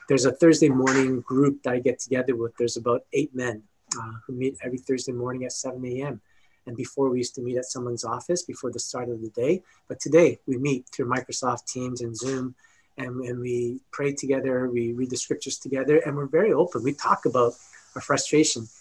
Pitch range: 120-135 Hz